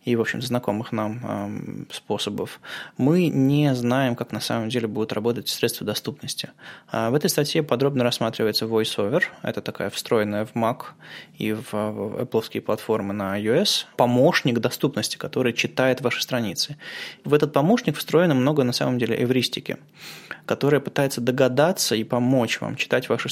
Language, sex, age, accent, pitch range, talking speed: Russian, male, 20-39, native, 115-135 Hz, 145 wpm